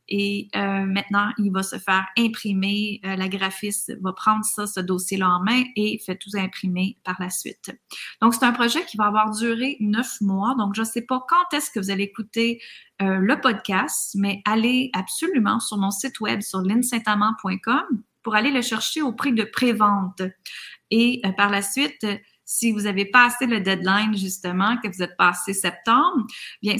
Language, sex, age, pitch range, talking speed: French, female, 30-49, 190-235 Hz, 190 wpm